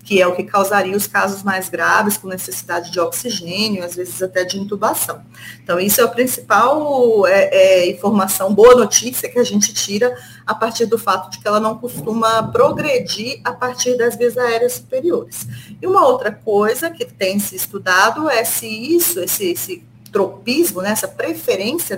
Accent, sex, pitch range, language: Brazilian, female, 190-245 Hz, Portuguese